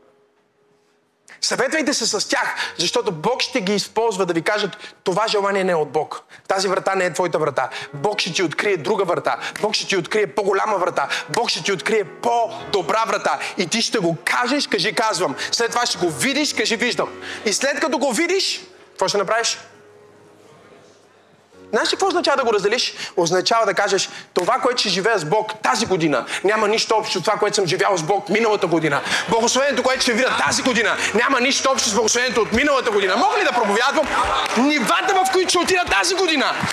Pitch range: 205-315 Hz